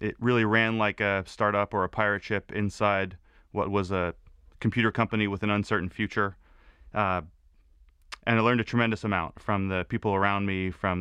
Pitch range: 90-105 Hz